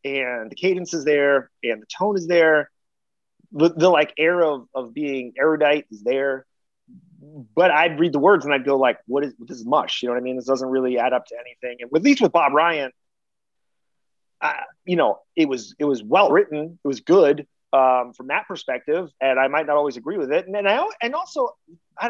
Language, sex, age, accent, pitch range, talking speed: English, male, 30-49, American, 135-205 Hz, 225 wpm